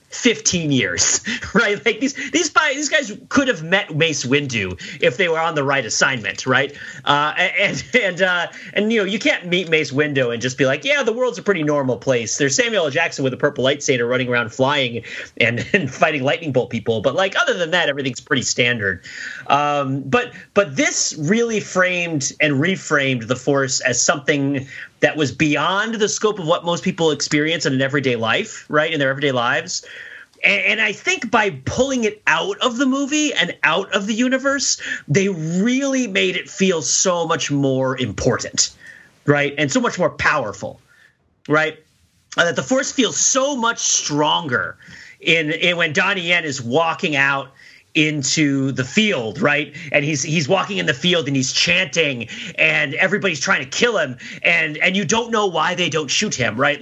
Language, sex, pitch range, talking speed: English, male, 140-200 Hz, 190 wpm